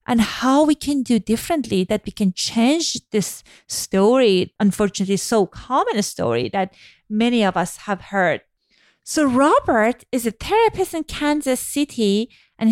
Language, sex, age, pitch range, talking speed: English, female, 40-59, 210-295 Hz, 145 wpm